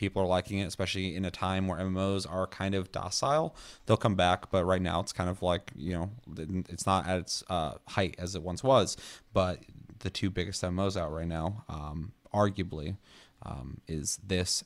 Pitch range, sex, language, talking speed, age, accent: 85-100 Hz, male, English, 200 wpm, 30-49, American